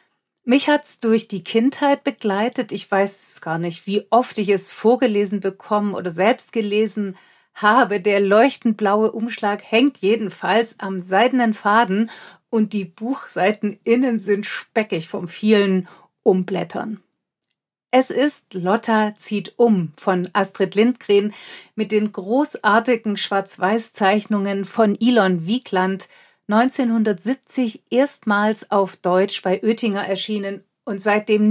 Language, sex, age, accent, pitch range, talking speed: German, female, 40-59, German, 195-230 Hz, 120 wpm